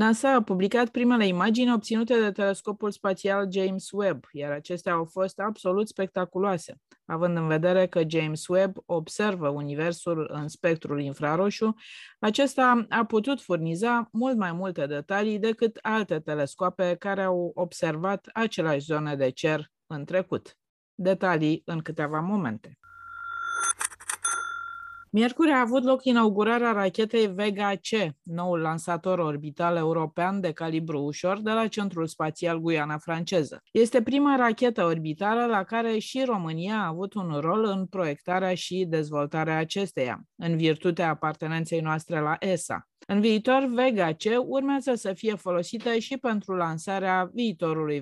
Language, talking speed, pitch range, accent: Romanian, 130 wpm, 160-225 Hz, native